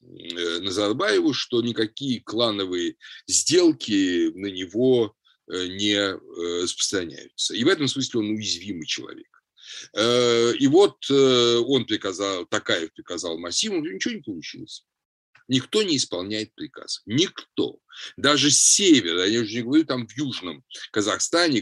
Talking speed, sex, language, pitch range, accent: 115 wpm, male, Russian, 110-155 Hz, native